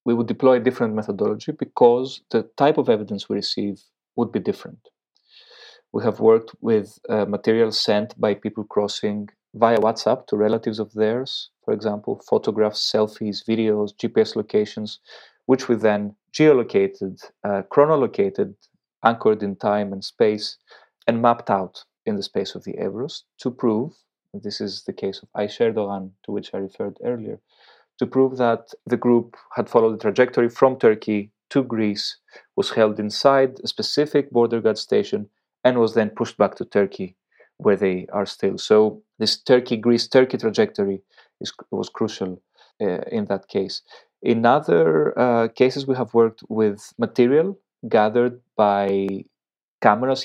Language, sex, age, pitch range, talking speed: English, male, 30-49, 105-125 Hz, 155 wpm